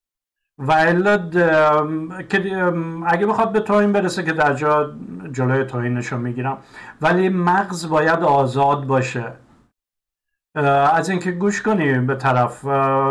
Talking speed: 105 wpm